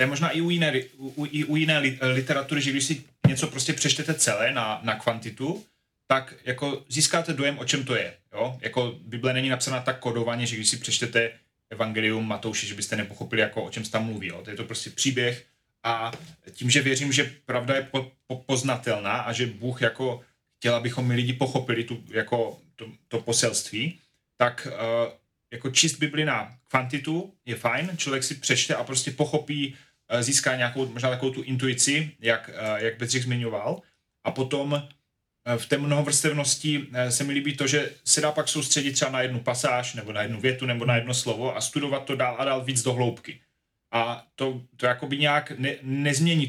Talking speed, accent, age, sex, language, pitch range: 190 wpm, native, 30-49, male, Czech, 115-140 Hz